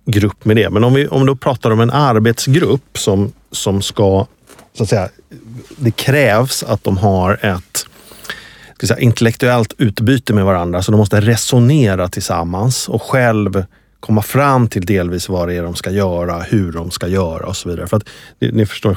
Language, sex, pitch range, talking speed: Swedish, male, 95-120 Hz, 185 wpm